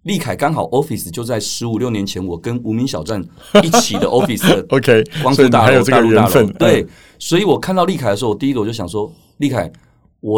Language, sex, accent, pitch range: Chinese, male, native, 100-125 Hz